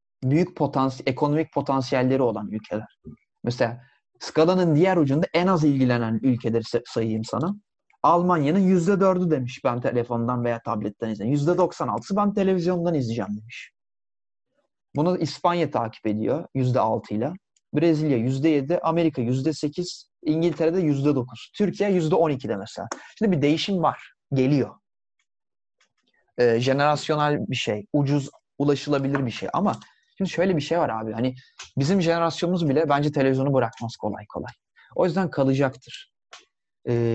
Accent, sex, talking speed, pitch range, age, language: native, male, 125 wpm, 120-160 Hz, 30-49, Turkish